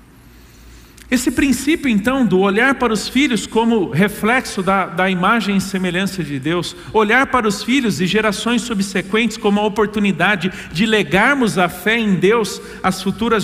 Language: Portuguese